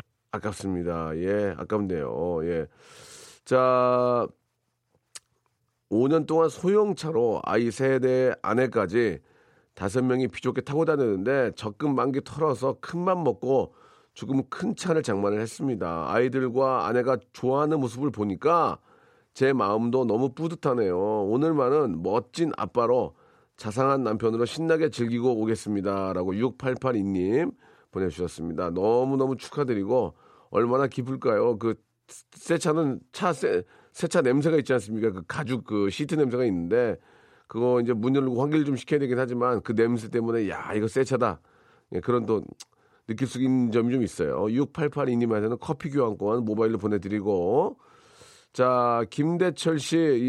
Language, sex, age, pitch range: Korean, male, 40-59, 110-150 Hz